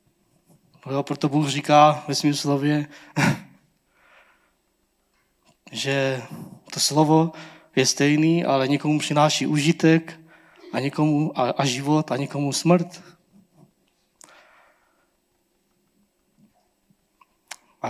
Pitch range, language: 135-165 Hz, Czech